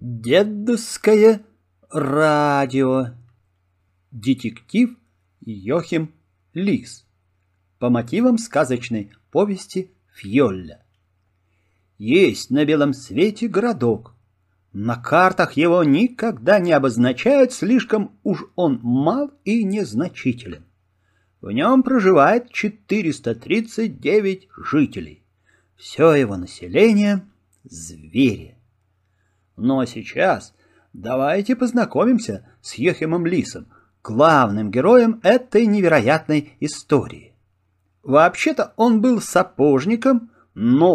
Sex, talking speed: male, 80 wpm